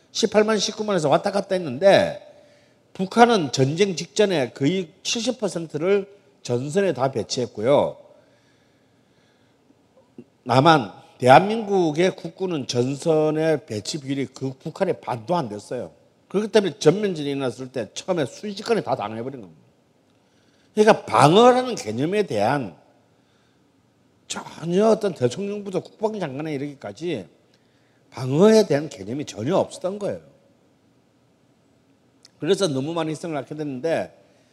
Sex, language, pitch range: male, Korean, 135-200 Hz